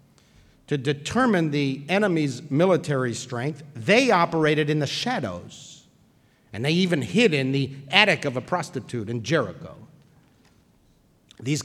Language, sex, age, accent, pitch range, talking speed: English, male, 50-69, American, 145-225 Hz, 125 wpm